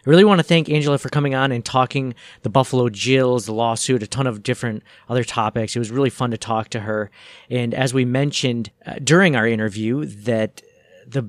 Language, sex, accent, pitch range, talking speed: English, male, American, 115-140 Hz, 205 wpm